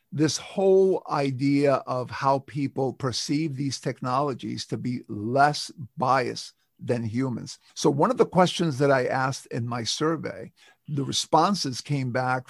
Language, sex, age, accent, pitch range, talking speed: English, male, 50-69, American, 125-165 Hz, 145 wpm